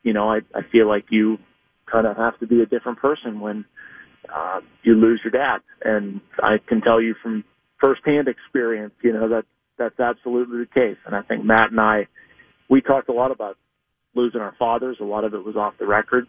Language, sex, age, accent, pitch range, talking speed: English, male, 40-59, American, 110-125 Hz, 215 wpm